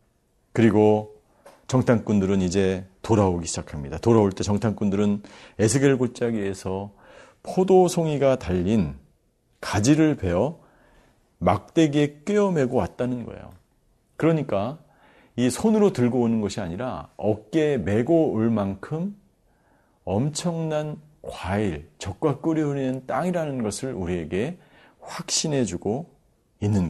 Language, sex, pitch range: Korean, male, 100-150 Hz